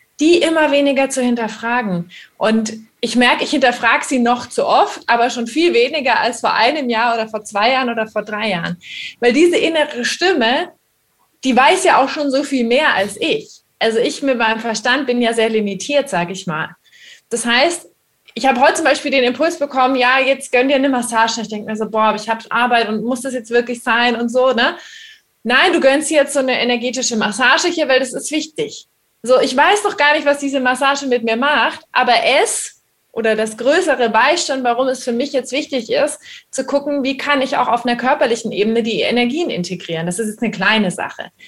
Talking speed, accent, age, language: 215 wpm, German, 20-39, German